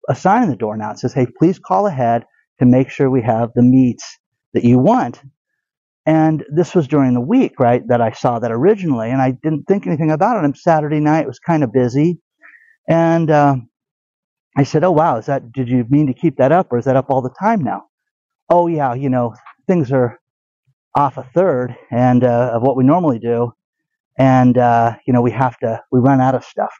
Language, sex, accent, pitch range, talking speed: English, male, American, 125-170 Hz, 225 wpm